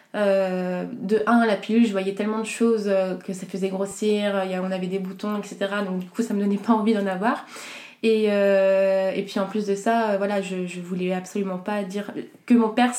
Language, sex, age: French, female, 20-39